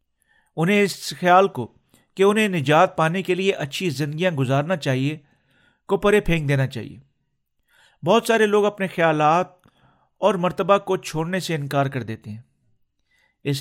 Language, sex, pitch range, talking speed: Urdu, male, 140-185 Hz, 150 wpm